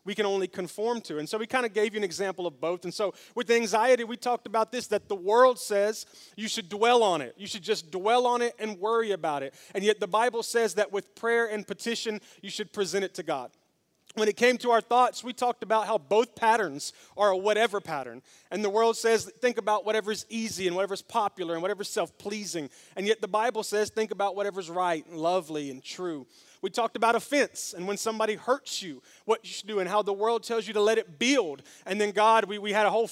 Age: 30-49